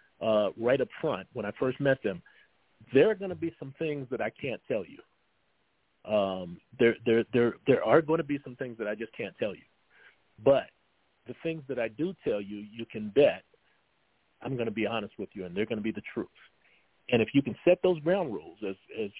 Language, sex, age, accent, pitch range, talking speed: English, male, 50-69, American, 110-140 Hz, 230 wpm